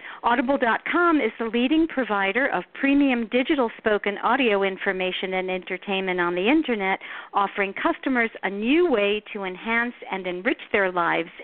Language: English